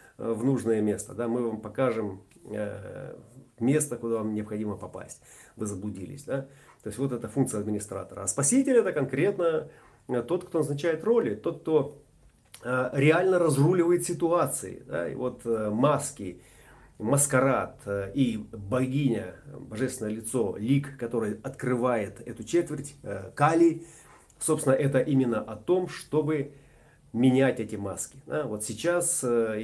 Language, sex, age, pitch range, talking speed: Russian, male, 30-49, 110-145 Hz, 120 wpm